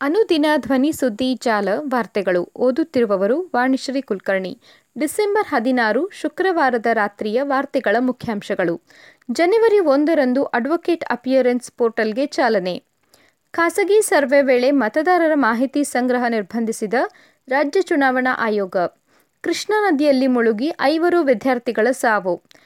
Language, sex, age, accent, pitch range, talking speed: Kannada, female, 20-39, native, 240-320 Hz, 95 wpm